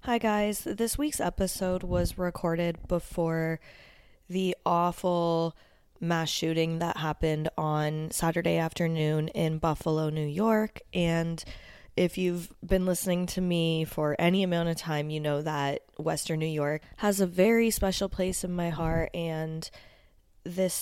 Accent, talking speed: American, 140 wpm